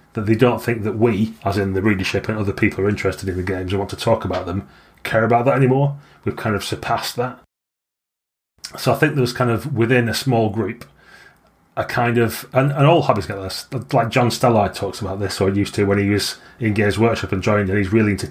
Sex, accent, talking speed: male, British, 245 wpm